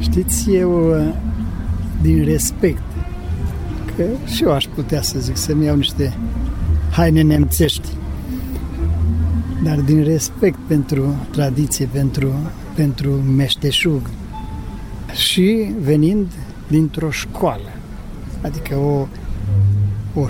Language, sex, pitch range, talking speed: Romanian, male, 105-160 Hz, 90 wpm